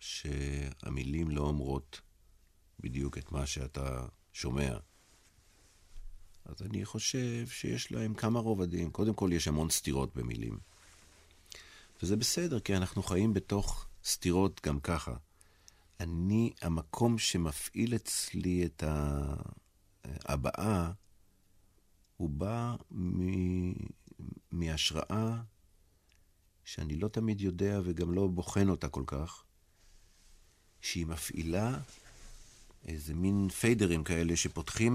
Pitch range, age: 75-100 Hz, 50-69